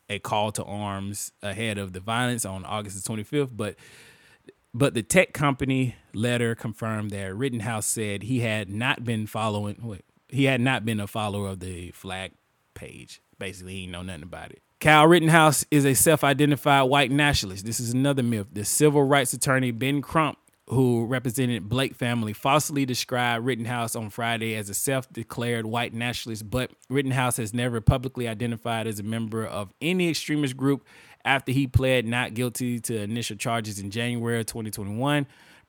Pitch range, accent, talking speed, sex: 110-135 Hz, American, 170 wpm, male